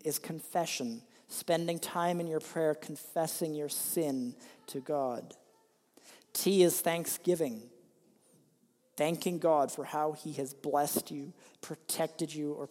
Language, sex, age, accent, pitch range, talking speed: English, male, 40-59, American, 140-170 Hz, 125 wpm